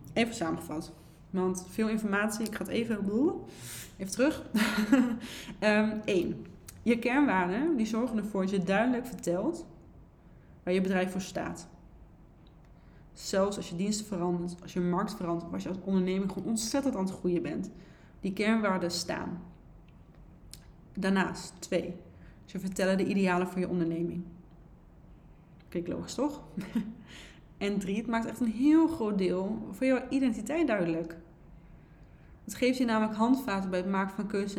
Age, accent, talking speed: 20-39, Dutch, 150 wpm